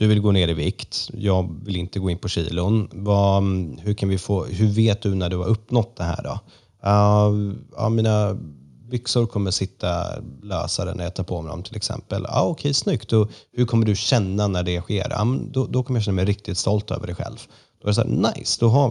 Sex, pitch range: male, 90-110 Hz